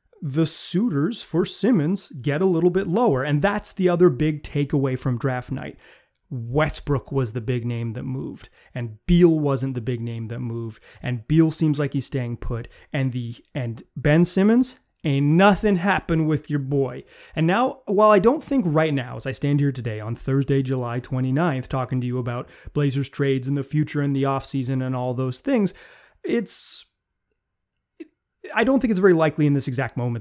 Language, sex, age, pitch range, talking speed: English, male, 30-49, 130-175 Hz, 190 wpm